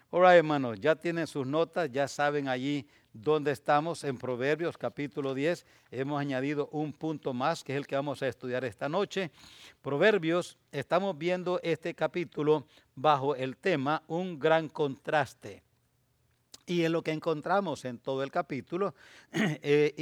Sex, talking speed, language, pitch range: male, 150 wpm, English, 135-170 Hz